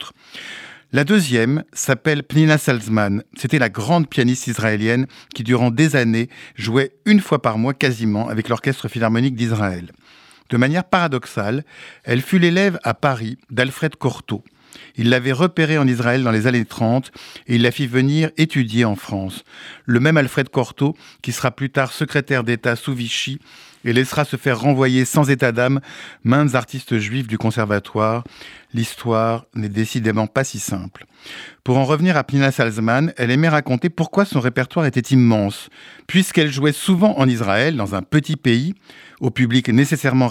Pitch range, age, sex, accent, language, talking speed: 115-150 Hz, 50-69, male, French, French, 160 wpm